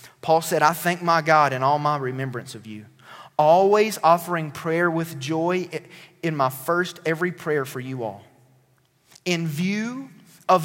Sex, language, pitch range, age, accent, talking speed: male, English, 145-210 Hz, 30-49, American, 160 wpm